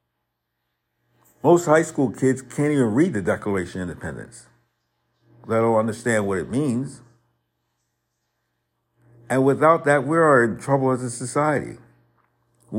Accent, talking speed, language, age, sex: American, 130 wpm, English, 50-69, male